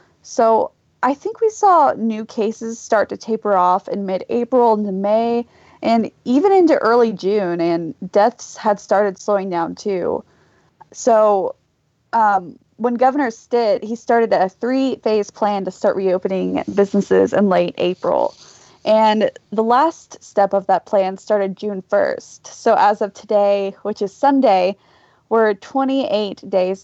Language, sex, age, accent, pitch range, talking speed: English, female, 20-39, American, 195-235 Hz, 145 wpm